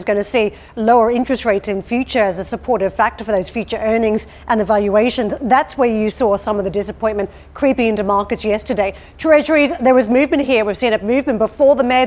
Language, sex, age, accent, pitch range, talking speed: English, female, 40-59, Australian, 210-245 Hz, 220 wpm